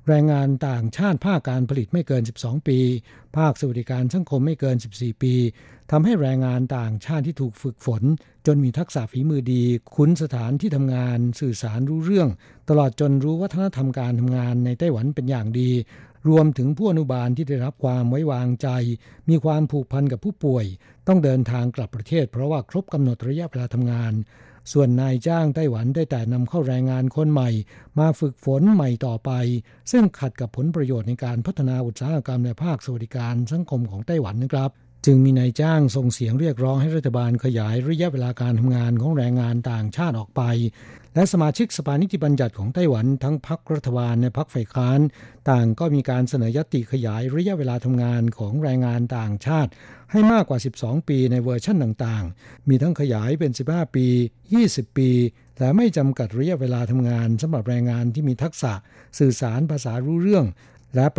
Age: 60-79